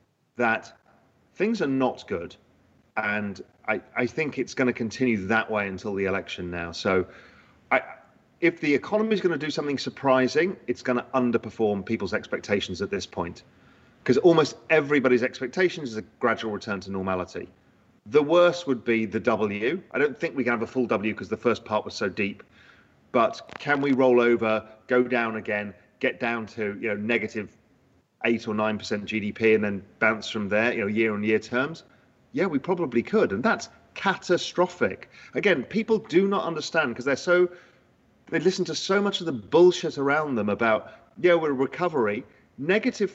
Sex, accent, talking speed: male, British, 185 wpm